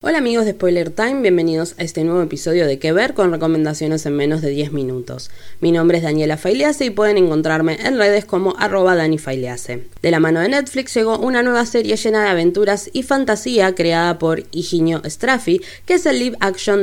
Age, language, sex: 20-39, Spanish, female